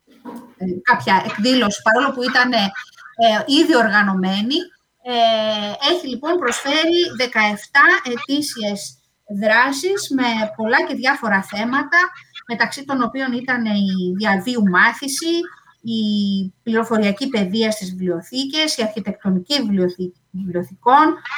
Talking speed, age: 100 wpm, 30-49